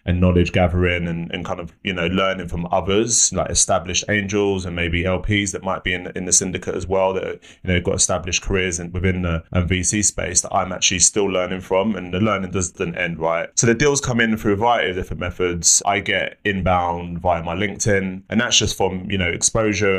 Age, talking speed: 20-39, 220 wpm